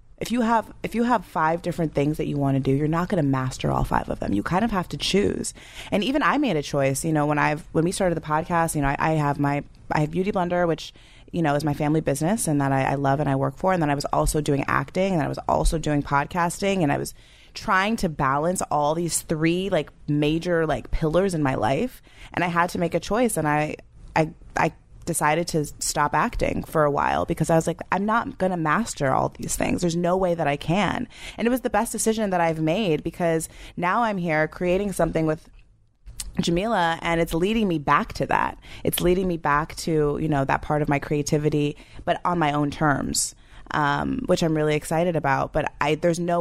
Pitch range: 145-175 Hz